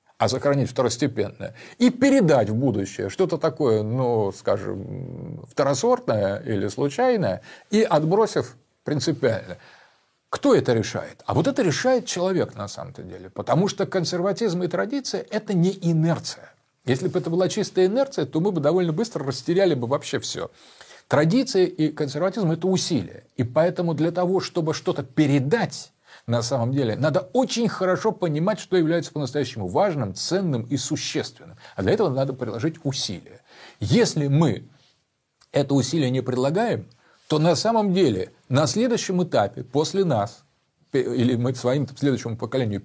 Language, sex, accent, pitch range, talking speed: Russian, male, native, 125-185 Hz, 145 wpm